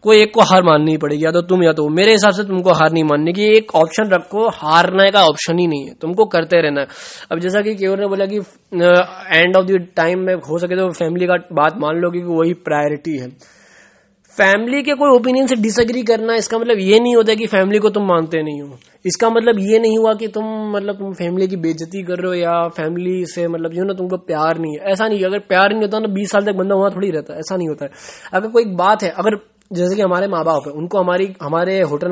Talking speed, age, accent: 240 wpm, 20-39, native